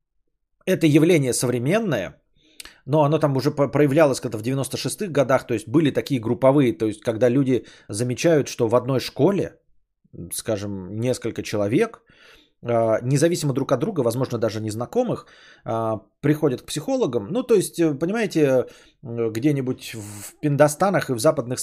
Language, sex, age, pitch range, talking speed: Bulgarian, male, 20-39, 120-160 Hz, 135 wpm